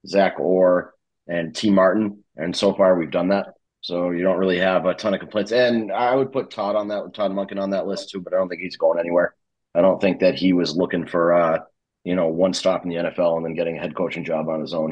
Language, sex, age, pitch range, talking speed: English, male, 30-49, 90-100 Hz, 265 wpm